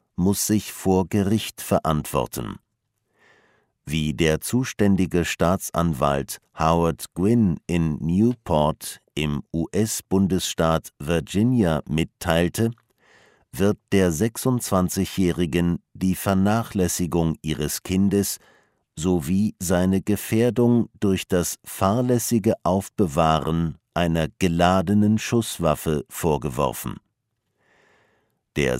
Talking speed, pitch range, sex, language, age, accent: 75 wpm, 85-110 Hz, male, English, 50-69, German